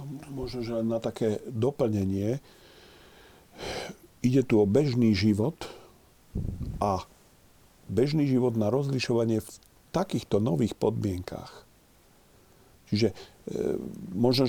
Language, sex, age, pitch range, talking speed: Slovak, male, 50-69, 105-125 Hz, 85 wpm